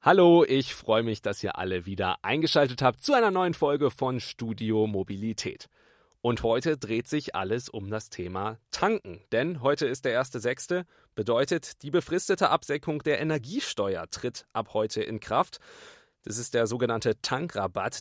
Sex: male